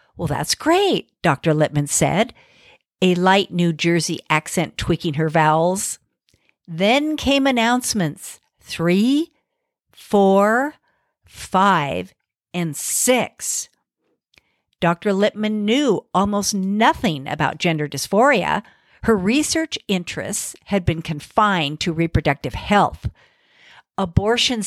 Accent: American